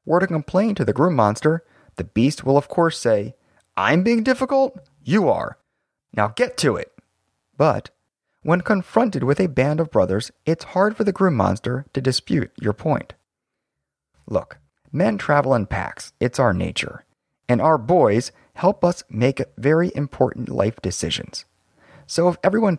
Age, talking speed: 30-49, 160 wpm